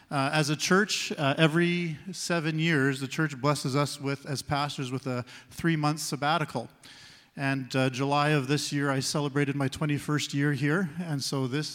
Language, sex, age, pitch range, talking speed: English, male, 40-59, 135-155 Hz, 175 wpm